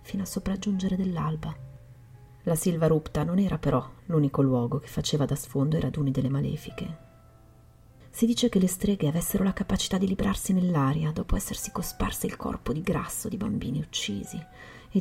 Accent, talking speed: native, 170 wpm